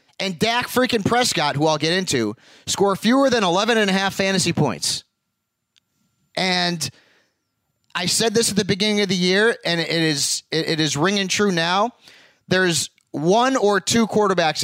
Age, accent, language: 30-49, American, English